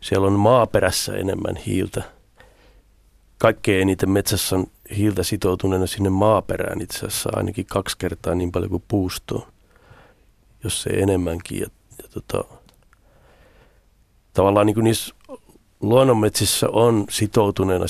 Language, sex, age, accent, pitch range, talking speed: Finnish, male, 40-59, native, 95-110 Hz, 110 wpm